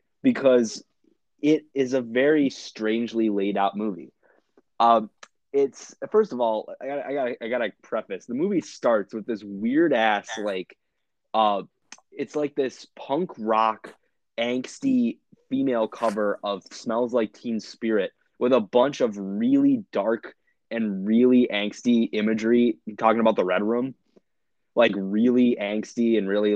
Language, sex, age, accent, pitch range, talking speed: English, male, 20-39, American, 105-130 Hz, 145 wpm